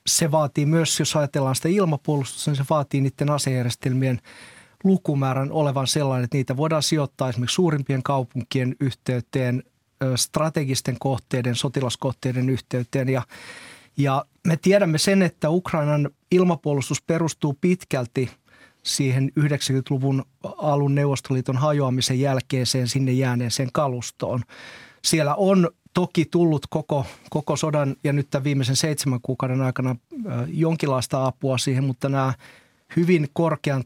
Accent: native